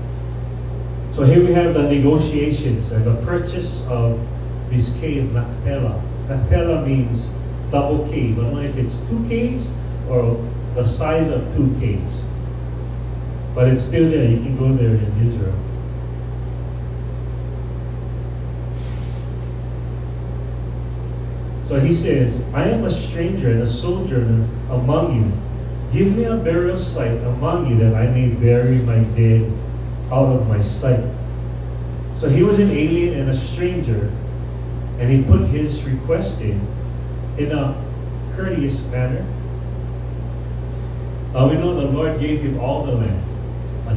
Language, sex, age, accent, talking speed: English, male, 30-49, American, 135 wpm